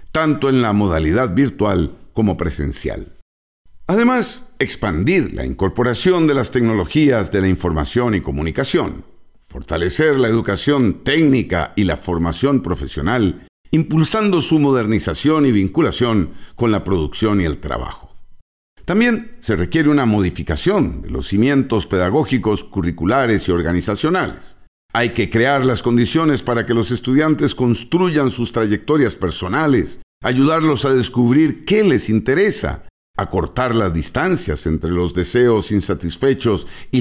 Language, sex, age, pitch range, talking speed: Spanish, male, 50-69, 95-145 Hz, 125 wpm